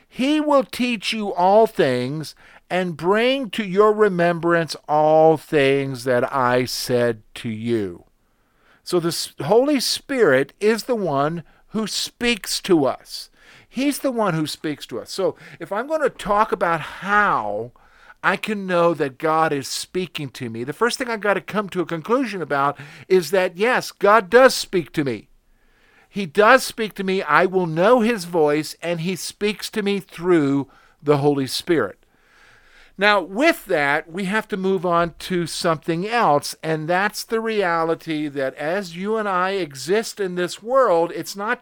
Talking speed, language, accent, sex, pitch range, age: 170 wpm, English, American, male, 155-215 Hz, 50-69